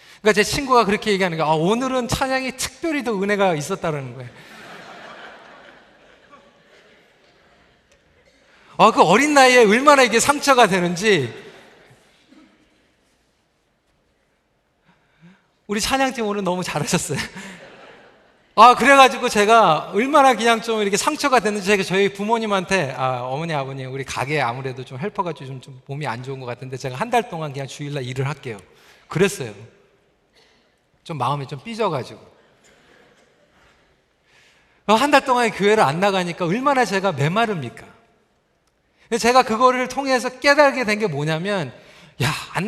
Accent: native